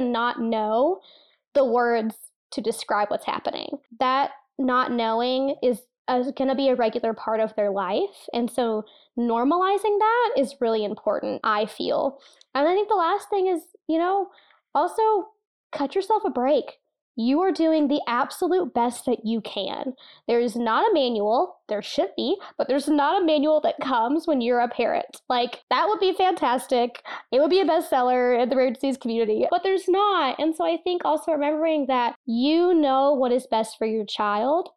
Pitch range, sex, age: 240-315 Hz, female, 20-39